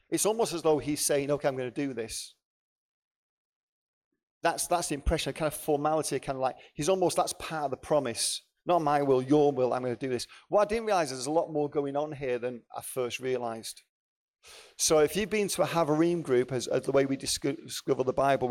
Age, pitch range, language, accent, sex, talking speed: 40-59, 130-170 Hz, English, British, male, 235 wpm